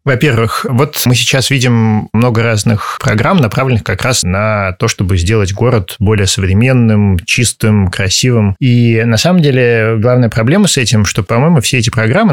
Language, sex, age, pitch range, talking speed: Russian, male, 20-39, 110-135 Hz, 160 wpm